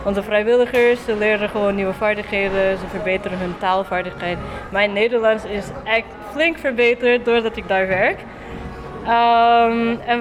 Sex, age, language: female, 20-39, English